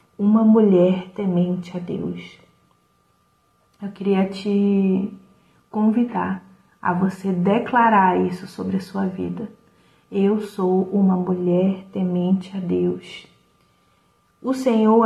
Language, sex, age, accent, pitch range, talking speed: Portuguese, female, 30-49, Brazilian, 185-205 Hz, 105 wpm